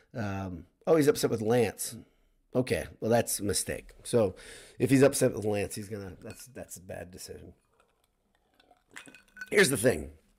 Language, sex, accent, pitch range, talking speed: English, male, American, 100-130 Hz, 155 wpm